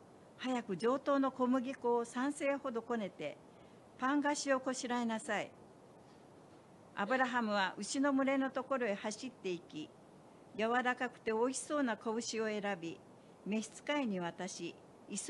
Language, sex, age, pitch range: Japanese, female, 60-79, 200-265 Hz